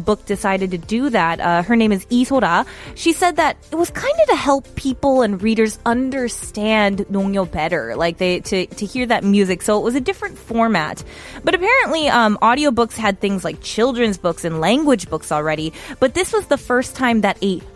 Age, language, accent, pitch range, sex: 20-39, Korean, American, 190-265 Hz, female